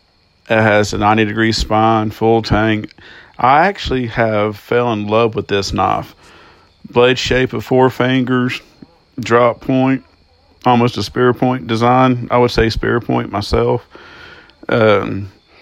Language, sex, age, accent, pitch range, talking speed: English, male, 40-59, American, 105-125 Hz, 135 wpm